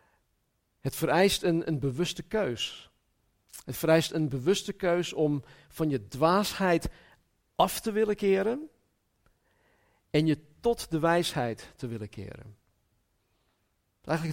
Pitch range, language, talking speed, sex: 120-165 Hz, Dutch, 115 wpm, male